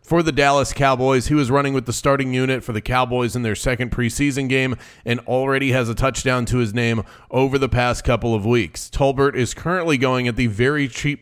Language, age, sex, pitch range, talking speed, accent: English, 30-49, male, 120-145 Hz, 220 wpm, American